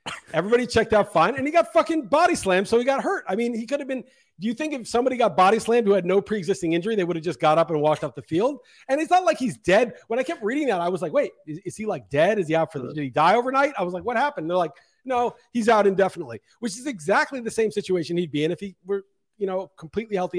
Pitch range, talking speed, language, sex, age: 165-240 Hz, 295 wpm, English, male, 40-59